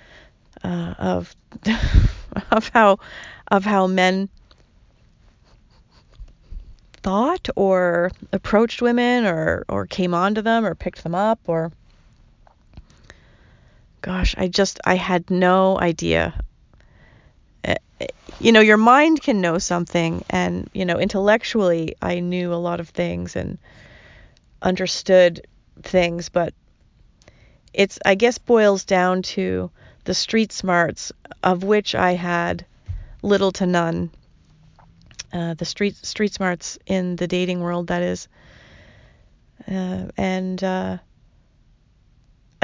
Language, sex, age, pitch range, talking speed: English, female, 30-49, 165-195 Hz, 110 wpm